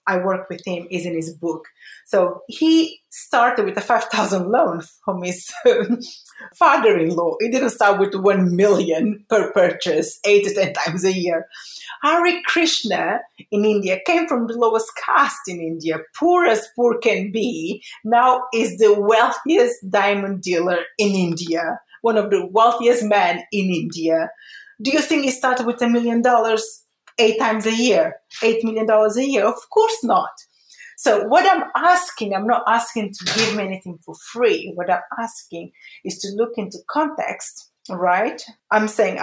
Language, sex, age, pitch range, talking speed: English, female, 30-49, 185-245 Hz, 165 wpm